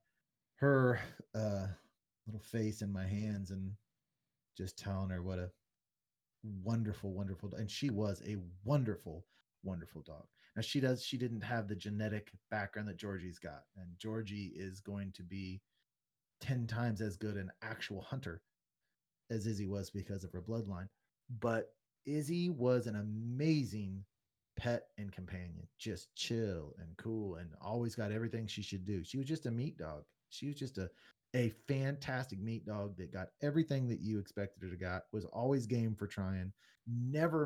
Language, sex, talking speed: English, male, 165 wpm